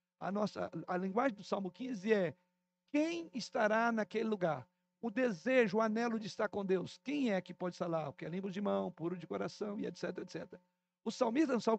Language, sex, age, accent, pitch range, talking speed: Portuguese, male, 60-79, Brazilian, 180-230 Hz, 210 wpm